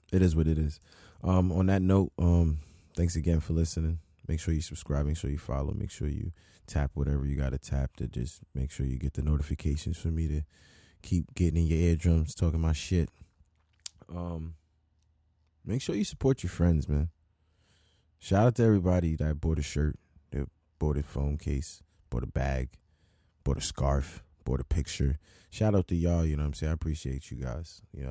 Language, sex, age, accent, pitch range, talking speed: English, male, 20-39, American, 75-90 Hz, 200 wpm